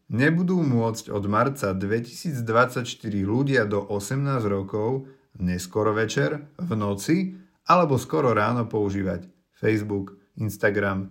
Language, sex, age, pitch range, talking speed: Slovak, male, 40-59, 100-120 Hz, 105 wpm